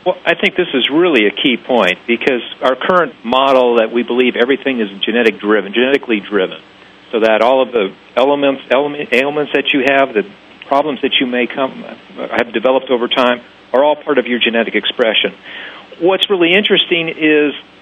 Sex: male